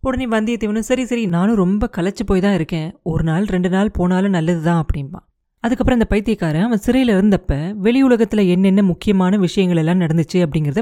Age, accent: 30-49, native